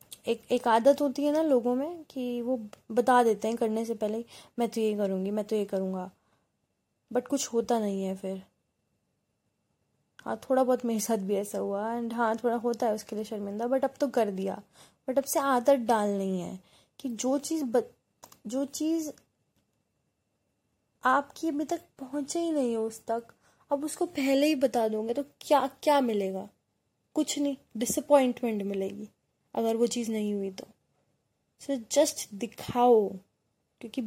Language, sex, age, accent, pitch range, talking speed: Hindi, female, 20-39, native, 215-260 Hz, 170 wpm